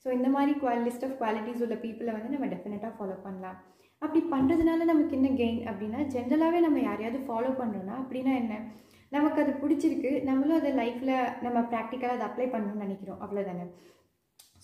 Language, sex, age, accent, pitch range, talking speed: Tamil, female, 20-39, native, 215-275 Hz, 165 wpm